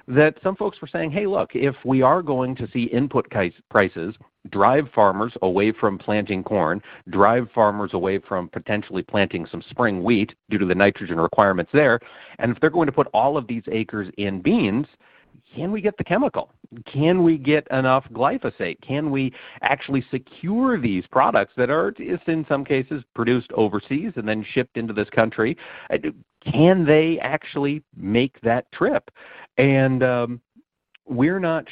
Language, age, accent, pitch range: English, 50-69, American, 115-145 Hz